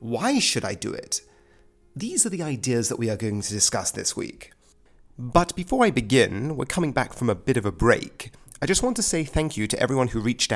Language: English